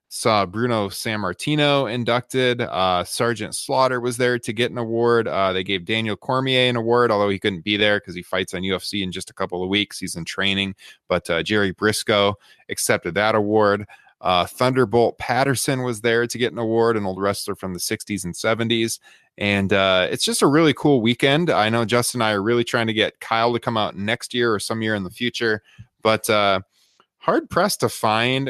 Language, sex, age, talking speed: English, male, 20-39, 210 wpm